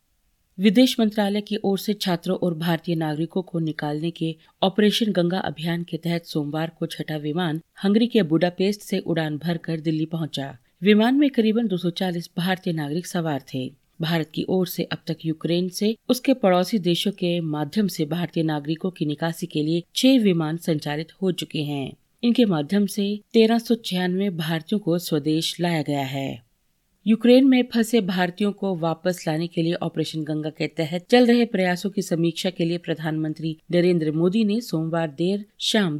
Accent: native